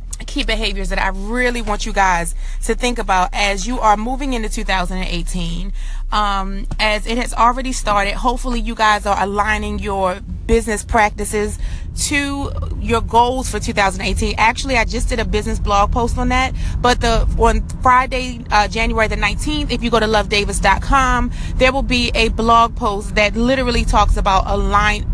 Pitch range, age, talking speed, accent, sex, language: 205-245 Hz, 30-49, 165 wpm, American, female, English